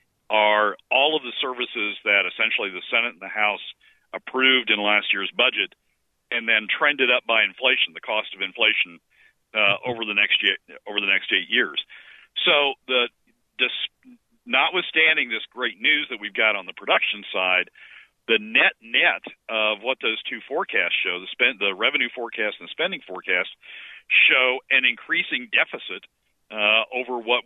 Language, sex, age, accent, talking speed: English, male, 50-69, American, 165 wpm